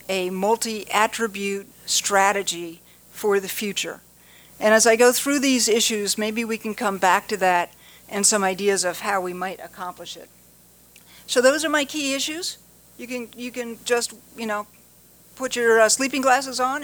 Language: English